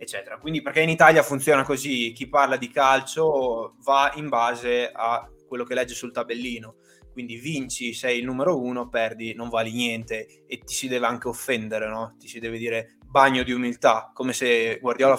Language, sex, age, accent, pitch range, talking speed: Italian, male, 20-39, native, 120-160 Hz, 185 wpm